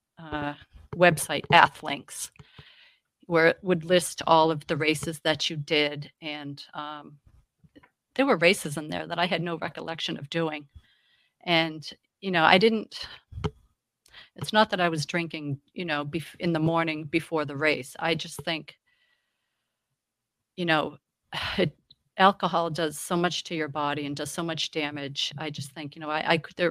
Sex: female